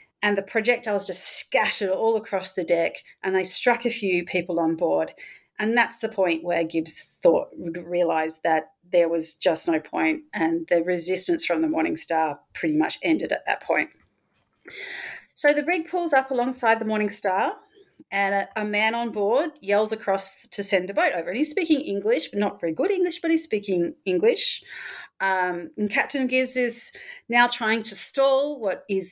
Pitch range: 180-255 Hz